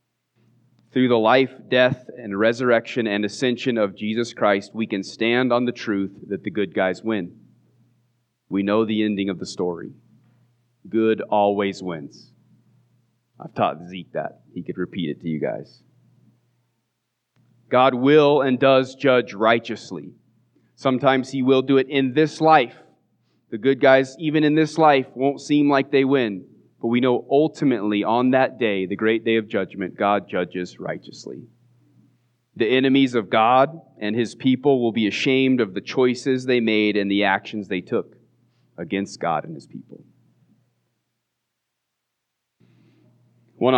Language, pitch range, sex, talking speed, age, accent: English, 110-130 Hz, male, 150 wpm, 30-49, American